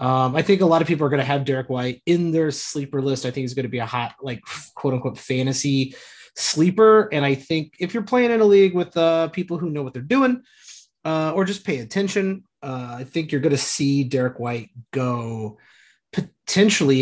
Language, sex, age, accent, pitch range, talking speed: English, male, 30-49, American, 125-165 Hz, 220 wpm